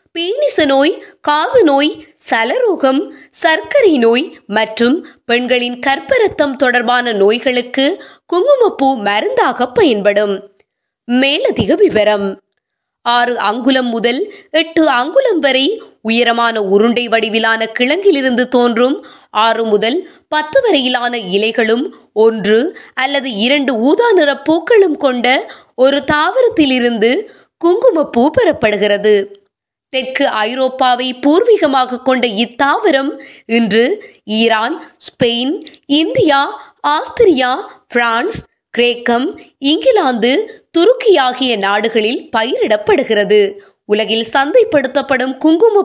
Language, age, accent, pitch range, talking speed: Tamil, 20-39, native, 235-330 Hz, 75 wpm